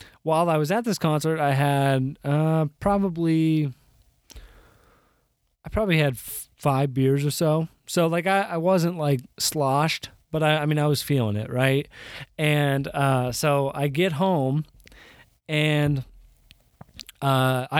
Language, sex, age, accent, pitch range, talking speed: English, male, 20-39, American, 130-160 Hz, 135 wpm